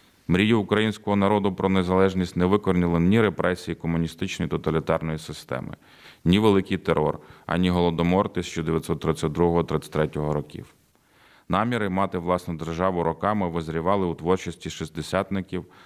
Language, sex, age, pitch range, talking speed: Ukrainian, male, 30-49, 80-95 Hz, 105 wpm